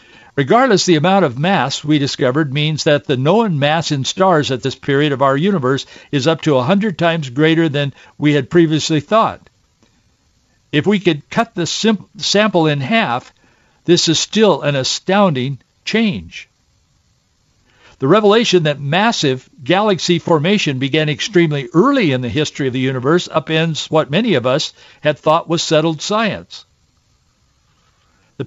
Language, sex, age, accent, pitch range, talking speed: English, male, 60-79, American, 135-180 Hz, 150 wpm